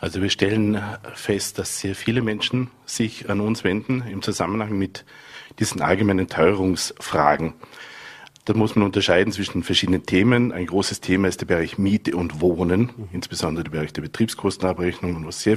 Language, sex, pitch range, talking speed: German, male, 90-110 Hz, 160 wpm